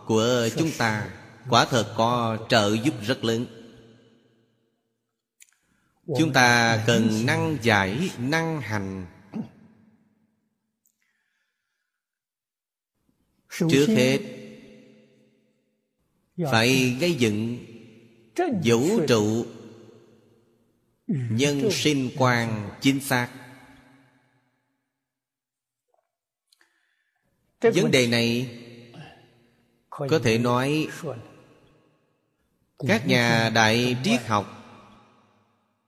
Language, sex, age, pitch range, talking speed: Vietnamese, male, 30-49, 115-135 Hz, 65 wpm